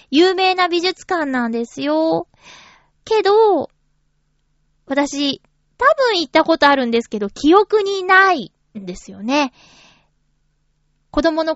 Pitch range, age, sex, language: 240-335 Hz, 20-39, female, Japanese